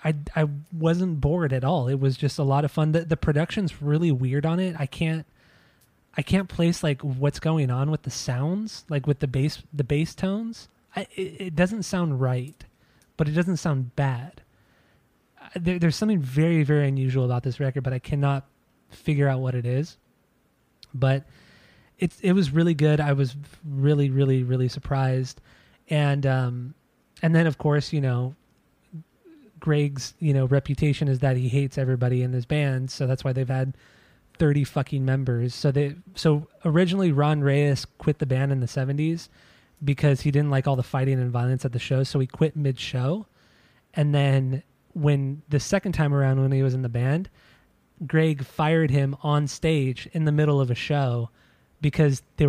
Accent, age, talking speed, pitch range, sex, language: American, 20-39, 185 wpm, 130-155 Hz, male, English